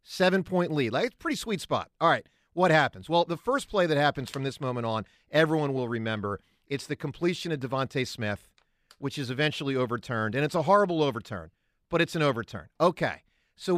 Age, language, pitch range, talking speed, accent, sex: 50-69, English, 125-190 Hz, 205 wpm, American, male